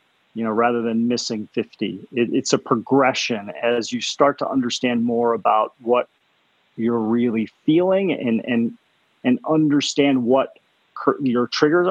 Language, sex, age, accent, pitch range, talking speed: English, male, 40-59, American, 120-150 Hz, 145 wpm